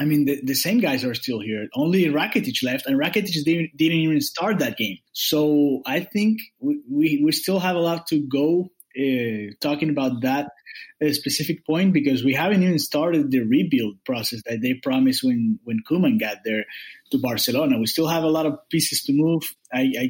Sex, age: male, 20-39